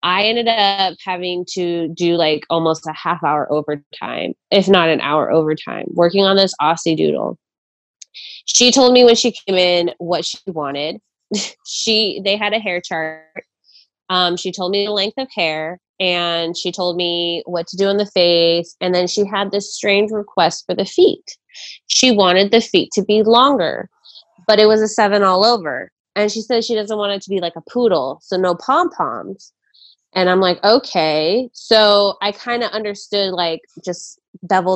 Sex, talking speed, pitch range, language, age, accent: female, 185 wpm, 170-220 Hz, English, 20-39, American